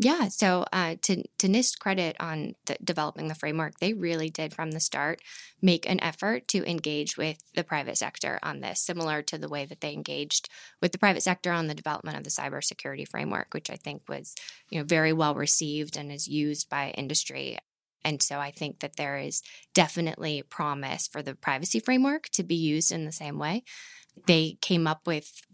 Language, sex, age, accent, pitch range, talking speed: English, female, 20-39, American, 150-185 Hz, 200 wpm